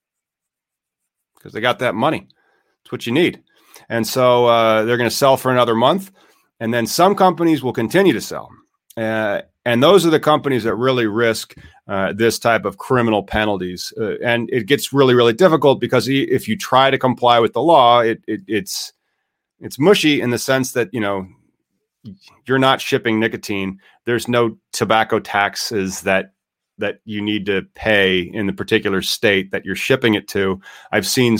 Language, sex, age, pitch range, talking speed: English, male, 30-49, 105-125 Hz, 180 wpm